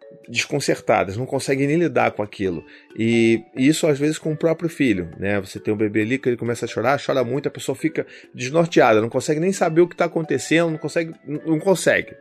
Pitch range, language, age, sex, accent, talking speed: 120-165 Hz, Portuguese, 30-49, male, Brazilian, 220 wpm